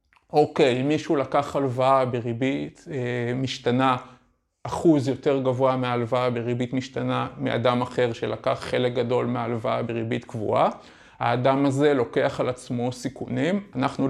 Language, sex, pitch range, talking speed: Hebrew, male, 125-150 Hz, 125 wpm